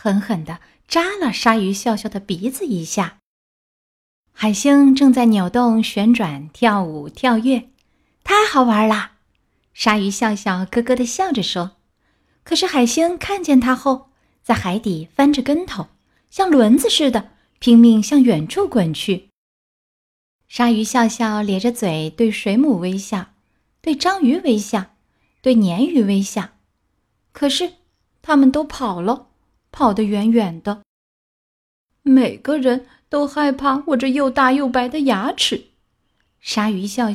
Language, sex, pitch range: Chinese, female, 210-275 Hz